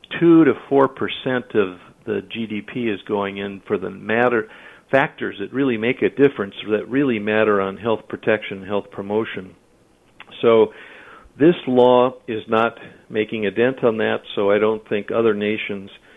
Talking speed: 160 wpm